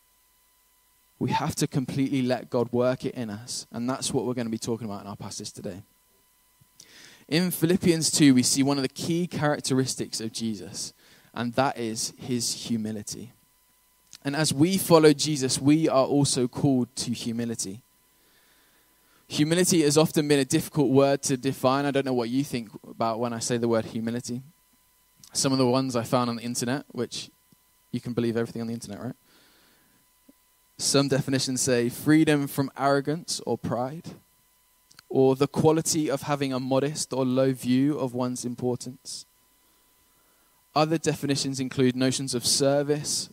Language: English